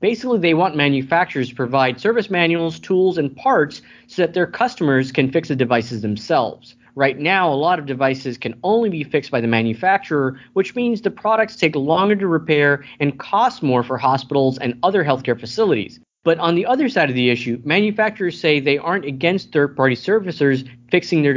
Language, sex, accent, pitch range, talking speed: English, male, American, 130-180 Hz, 190 wpm